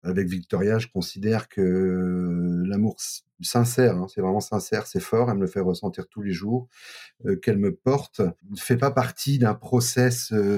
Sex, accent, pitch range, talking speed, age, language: male, French, 95-120 Hz, 185 wpm, 40-59, French